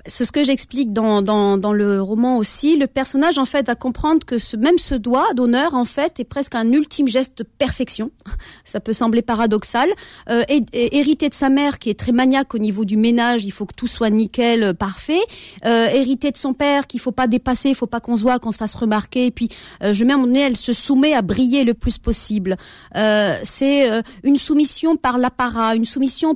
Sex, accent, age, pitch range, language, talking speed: female, French, 40-59, 225-270 Hz, French, 230 wpm